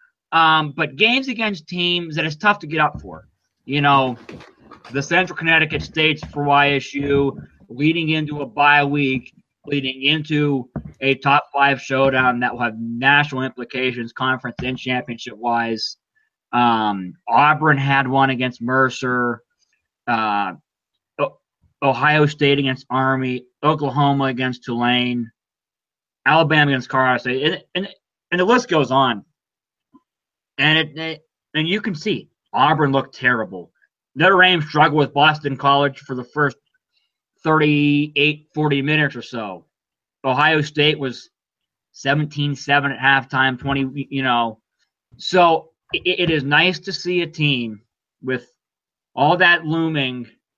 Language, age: English, 20-39